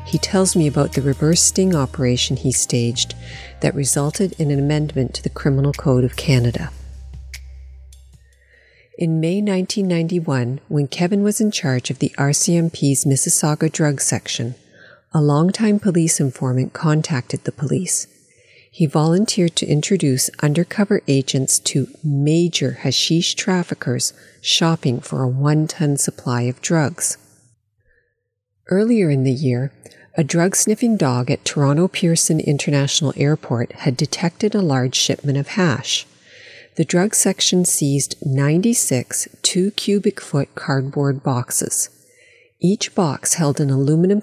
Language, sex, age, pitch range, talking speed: English, female, 50-69, 135-175 Hz, 125 wpm